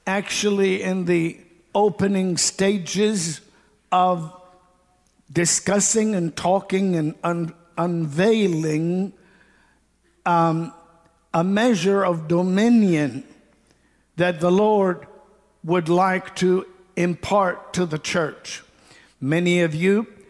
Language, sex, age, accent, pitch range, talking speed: English, male, 60-79, American, 170-200 Hz, 85 wpm